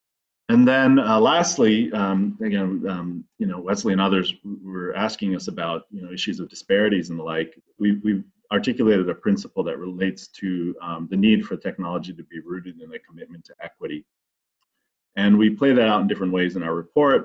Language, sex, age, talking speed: English, male, 30-49, 195 wpm